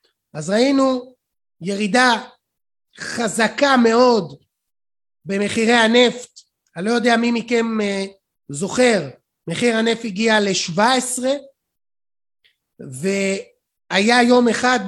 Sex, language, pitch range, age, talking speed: male, Hebrew, 195-245 Hz, 30-49, 85 wpm